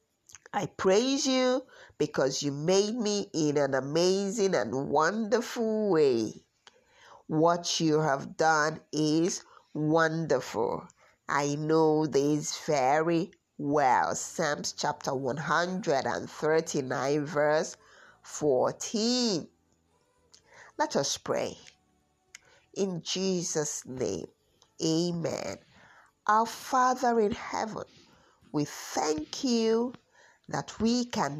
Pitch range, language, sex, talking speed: 145-205 Hz, English, female, 90 wpm